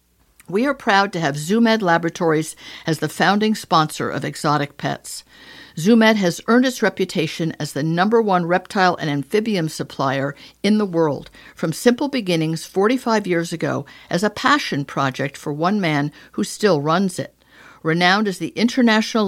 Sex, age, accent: female, 50-69, American